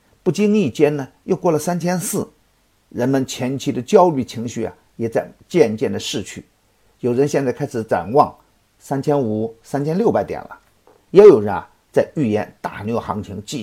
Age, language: 50-69, Chinese